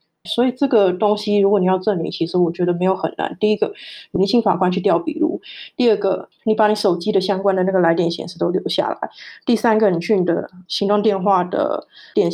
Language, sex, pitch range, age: Chinese, female, 180-220 Hz, 20-39